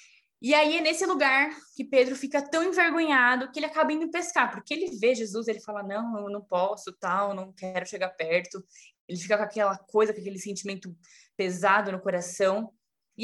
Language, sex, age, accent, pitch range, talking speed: Portuguese, female, 20-39, Brazilian, 200-275 Hz, 190 wpm